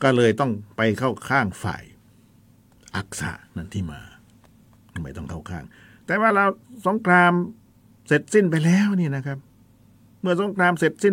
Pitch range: 105-125 Hz